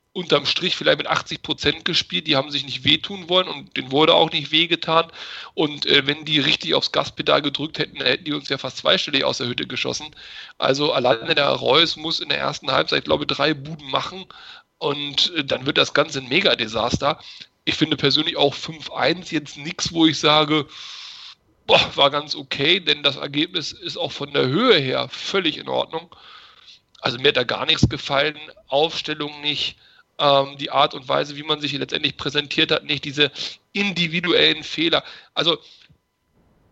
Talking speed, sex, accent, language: 180 wpm, male, German, German